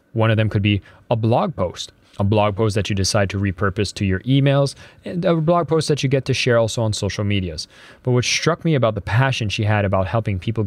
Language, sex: English, male